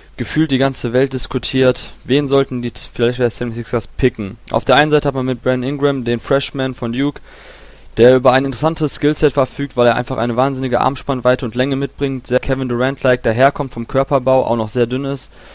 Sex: male